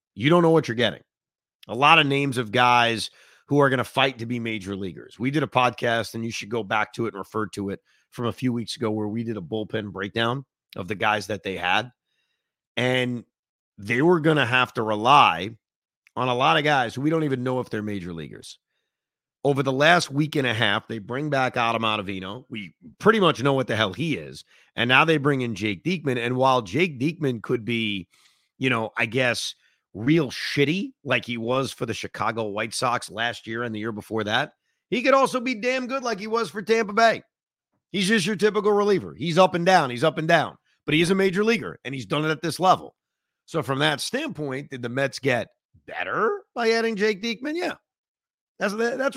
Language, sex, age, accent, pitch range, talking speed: English, male, 30-49, American, 115-165 Hz, 225 wpm